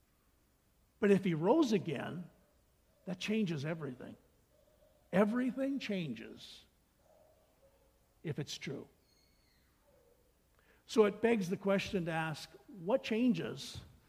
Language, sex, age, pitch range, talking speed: English, male, 60-79, 170-205 Hz, 95 wpm